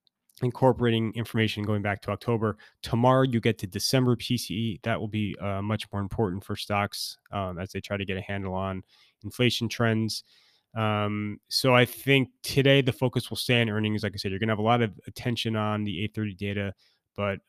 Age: 20-39